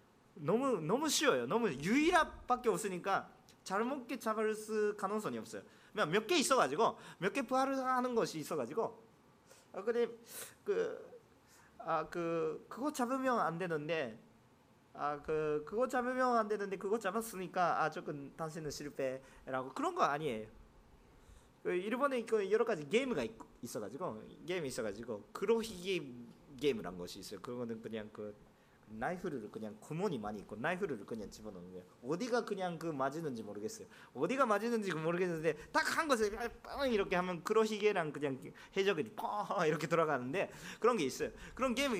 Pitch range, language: 155-260 Hz, Korean